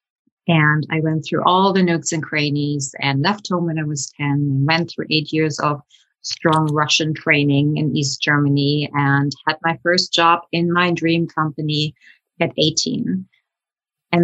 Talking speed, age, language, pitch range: 165 wpm, 30-49, English, 150-175 Hz